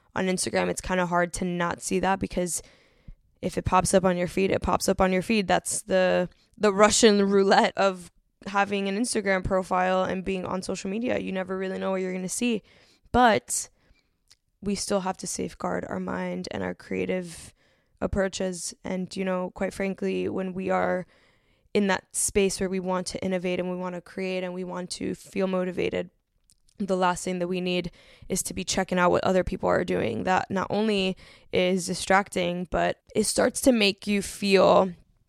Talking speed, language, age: 195 wpm, English, 10-29